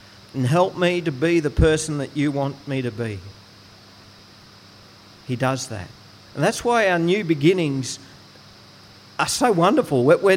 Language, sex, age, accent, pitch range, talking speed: English, male, 50-69, Australian, 105-145 Hz, 150 wpm